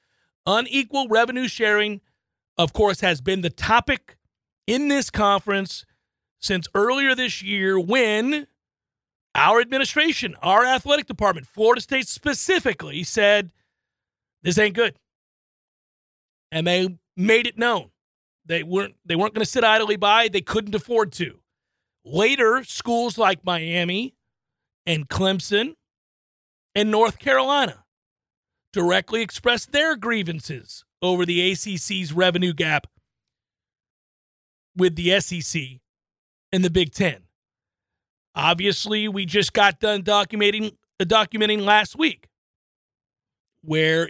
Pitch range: 170-220 Hz